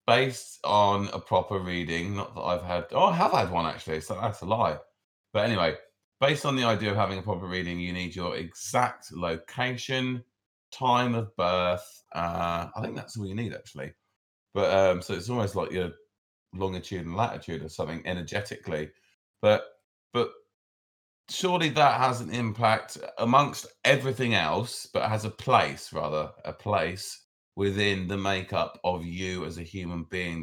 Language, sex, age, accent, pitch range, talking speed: English, male, 30-49, British, 90-115 Hz, 170 wpm